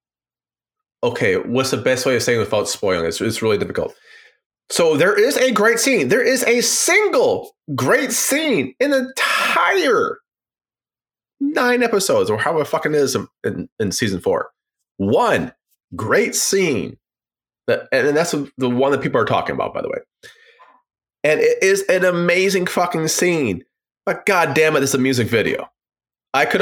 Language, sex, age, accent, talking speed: English, male, 30-49, American, 165 wpm